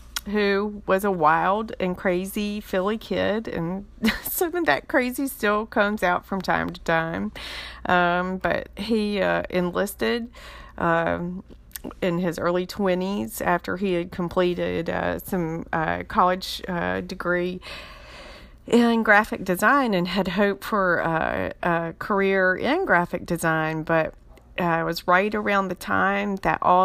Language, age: English, 40-59